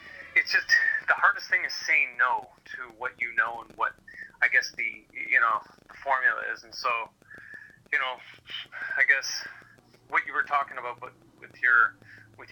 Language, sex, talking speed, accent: English, male, 175 wpm, American